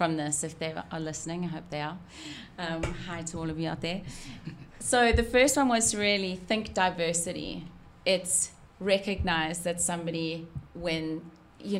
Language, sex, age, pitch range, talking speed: English, female, 30-49, 160-180 Hz, 165 wpm